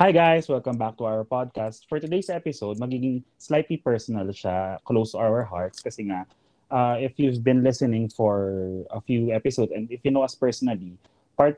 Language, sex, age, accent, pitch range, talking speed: Filipino, male, 20-39, native, 110-140 Hz, 180 wpm